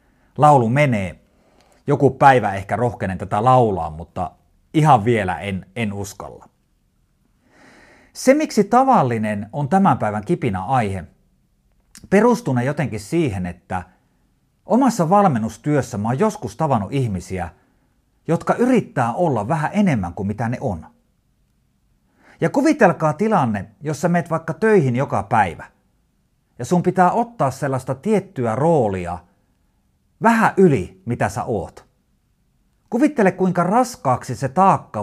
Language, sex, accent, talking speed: Finnish, male, native, 115 wpm